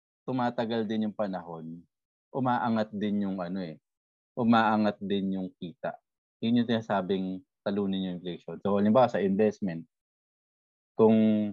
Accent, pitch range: Filipino, 95-115 Hz